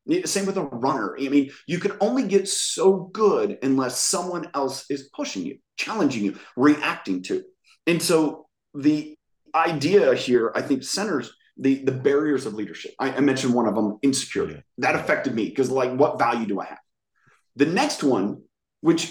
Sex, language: male, English